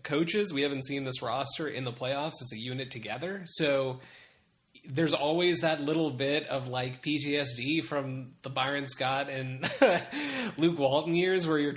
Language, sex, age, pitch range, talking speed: English, male, 20-39, 120-150 Hz, 165 wpm